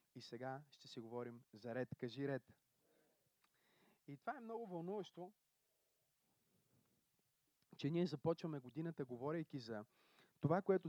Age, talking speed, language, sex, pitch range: 30-49, 120 wpm, Bulgarian, male, 120-160 Hz